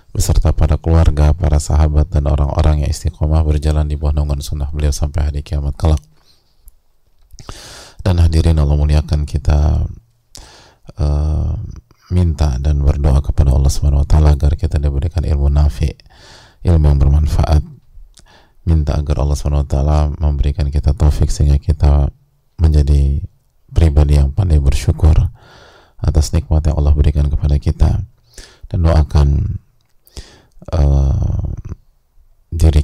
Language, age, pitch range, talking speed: English, 20-39, 75-85 Hz, 120 wpm